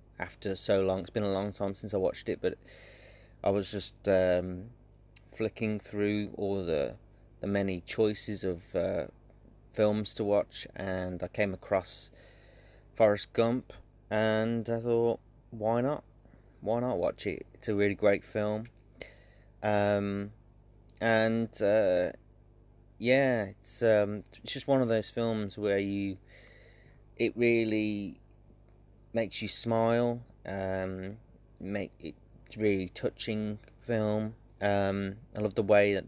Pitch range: 95-115 Hz